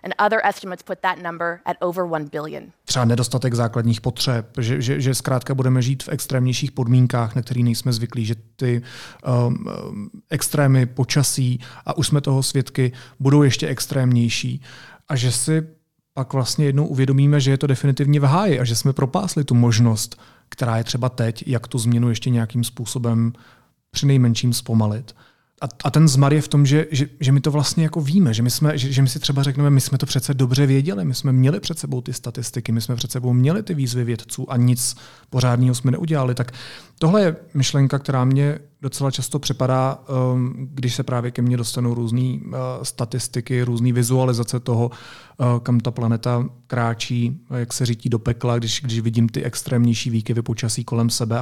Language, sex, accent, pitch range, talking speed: Czech, male, native, 120-145 Hz, 170 wpm